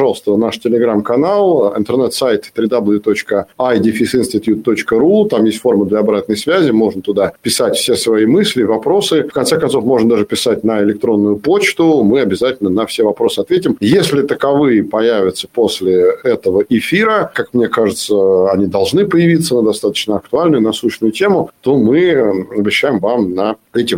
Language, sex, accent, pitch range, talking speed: Russian, male, native, 105-160 Hz, 140 wpm